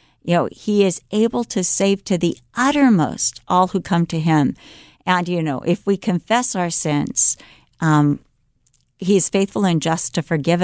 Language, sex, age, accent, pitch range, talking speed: English, female, 50-69, American, 165-205 Hz, 175 wpm